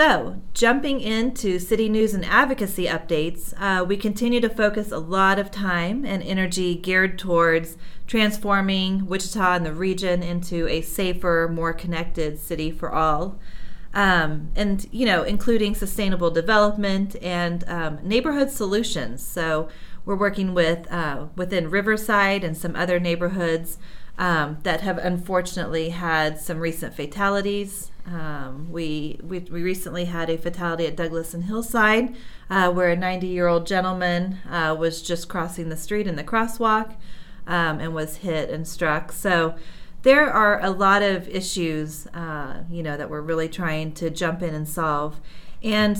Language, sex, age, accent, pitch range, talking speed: English, female, 30-49, American, 165-200 Hz, 155 wpm